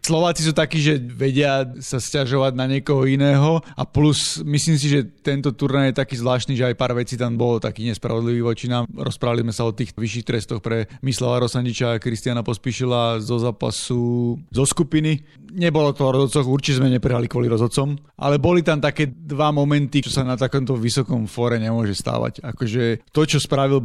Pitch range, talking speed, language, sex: 120-135 Hz, 185 wpm, Slovak, male